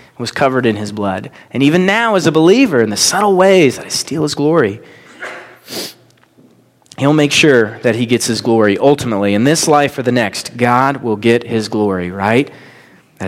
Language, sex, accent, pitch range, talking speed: English, male, American, 110-140 Hz, 190 wpm